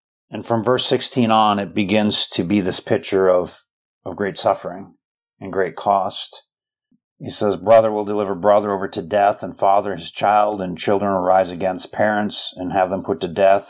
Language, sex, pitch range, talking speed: English, male, 95-110 Hz, 190 wpm